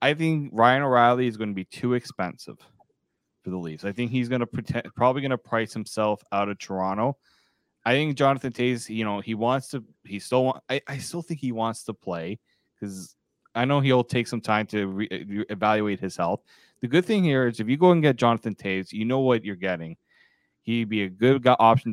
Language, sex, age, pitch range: English, male, 30-49, 105-130 Hz